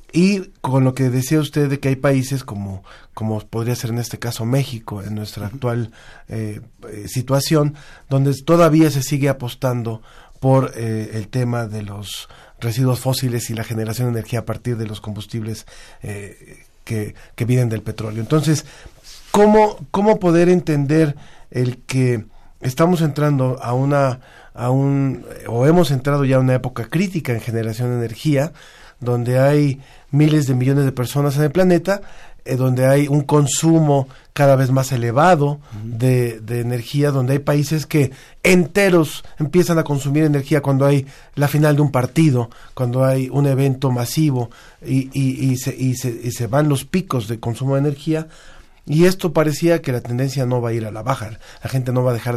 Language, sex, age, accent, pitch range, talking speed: Spanish, male, 40-59, Mexican, 120-145 Hz, 175 wpm